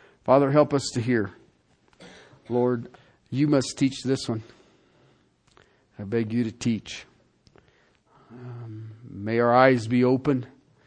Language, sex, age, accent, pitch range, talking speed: English, male, 50-69, American, 115-170 Hz, 120 wpm